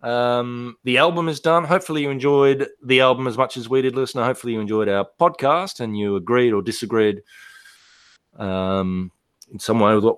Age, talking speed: 30-49, 190 wpm